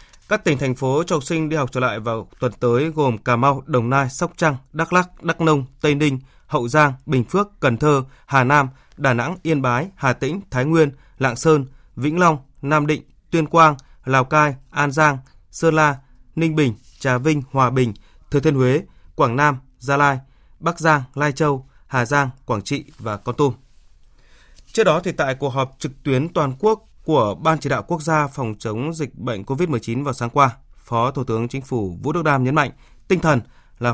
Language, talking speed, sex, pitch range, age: Vietnamese, 205 wpm, male, 125-155 Hz, 20-39